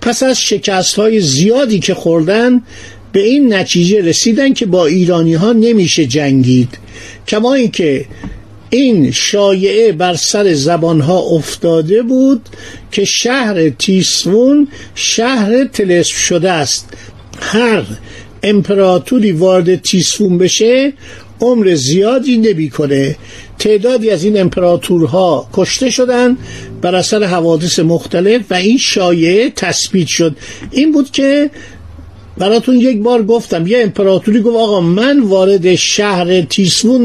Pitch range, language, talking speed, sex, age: 165-235 Hz, Persian, 115 wpm, male, 50-69